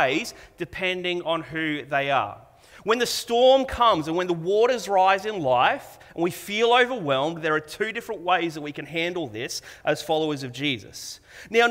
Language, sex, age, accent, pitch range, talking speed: English, male, 30-49, Australian, 160-230 Hz, 180 wpm